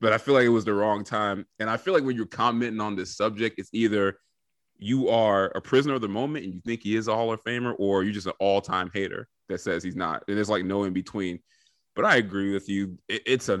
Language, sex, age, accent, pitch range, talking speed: English, male, 30-49, American, 100-125 Hz, 265 wpm